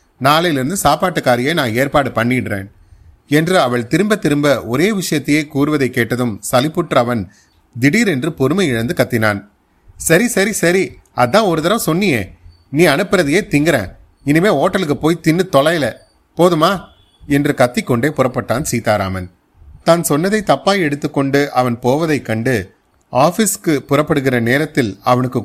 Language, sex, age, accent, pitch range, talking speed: Tamil, male, 30-49, native, 110-150 Hz, 115 wpm